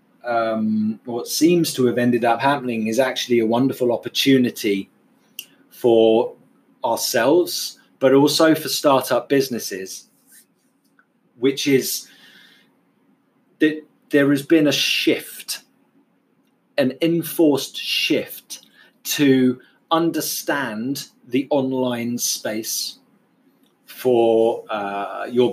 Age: 30-49